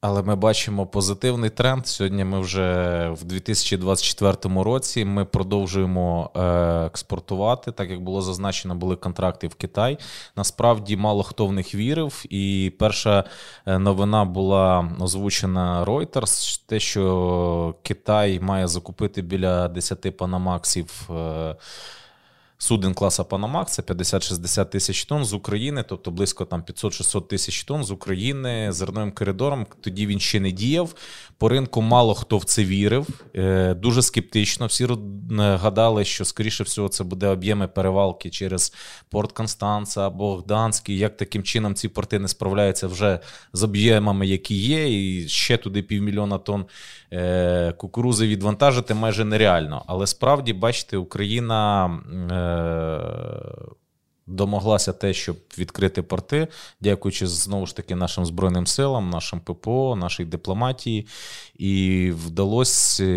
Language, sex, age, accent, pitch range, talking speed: Ukrainian, male, 20-39, native, 95-110 Hz, 125 wpm